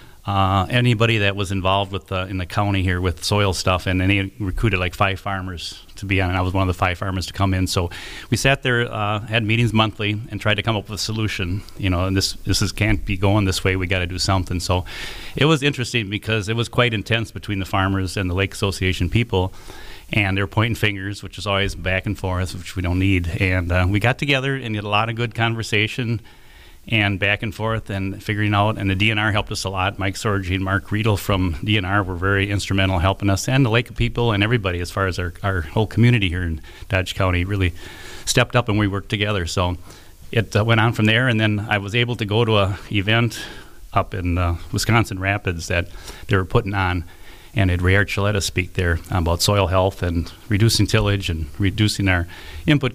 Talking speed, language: 230 wpm, English